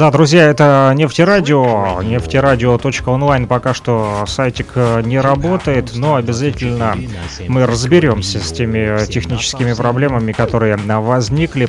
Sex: male